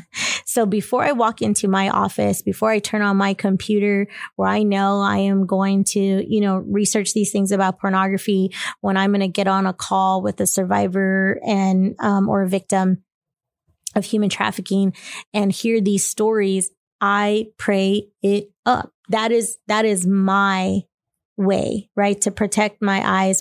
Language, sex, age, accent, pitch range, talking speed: English, female, 20-39, American, 190-210 Hz, 165 wpm